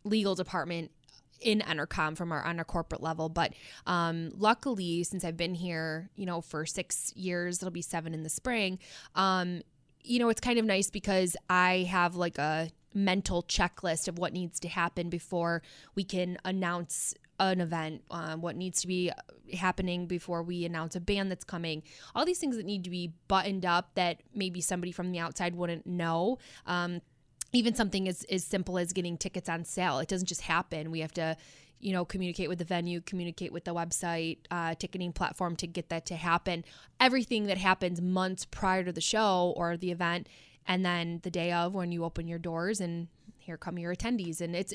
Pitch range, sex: 165-185 Hz, female